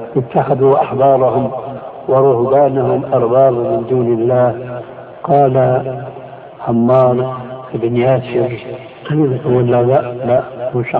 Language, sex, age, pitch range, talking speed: Arabic, male, 60-79, 125-145 Hz, 85 wpm